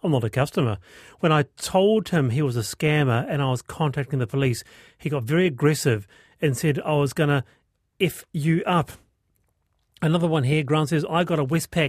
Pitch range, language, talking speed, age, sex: 140-190 Hz, English, 200 wpm, 40-59, male